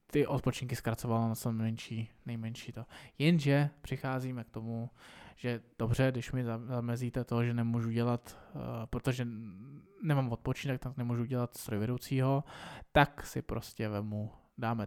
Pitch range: 115-135 Hz